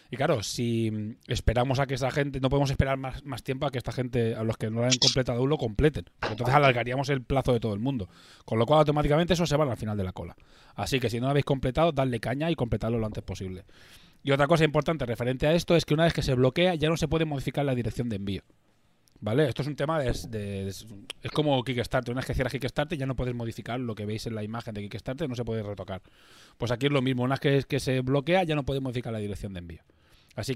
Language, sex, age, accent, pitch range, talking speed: Spanish, male, 20-39, Spanish, 115-145 Hz, 265 wpm